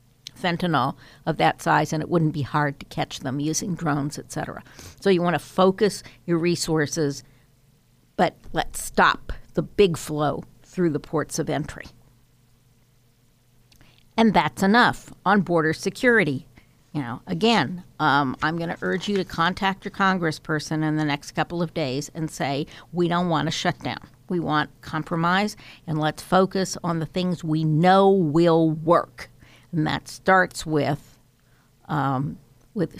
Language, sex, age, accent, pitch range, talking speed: English, female, 50-69, American, 145-180 Hz, 155 wpm